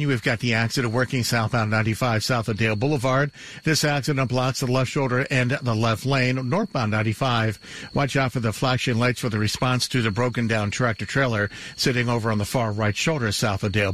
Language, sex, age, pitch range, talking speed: English, male, 60-79, 110-135 Hz, 205 wpm